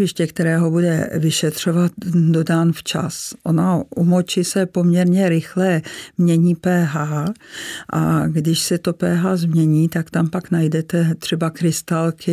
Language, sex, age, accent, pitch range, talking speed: Czech, female, 50-69, native, 155-175 Hz, 115 wpm